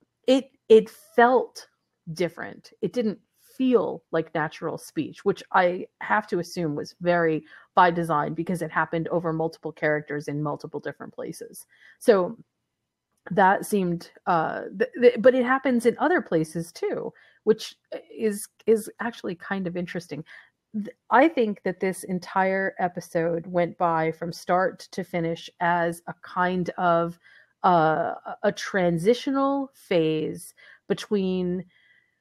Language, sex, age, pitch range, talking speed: English, female, 30-49, 170-210 Hz, 130 wpm